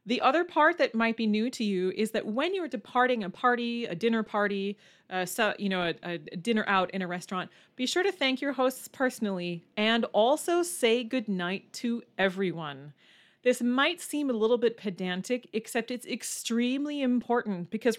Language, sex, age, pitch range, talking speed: English, female, 30-49, 190-245 Hz, 180 wpm